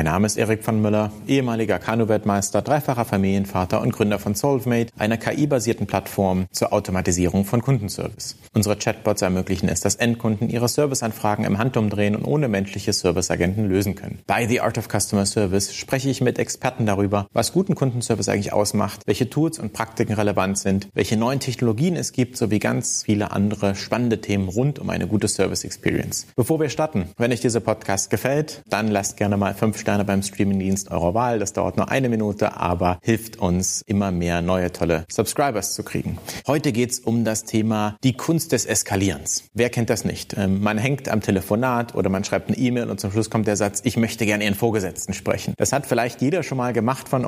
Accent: German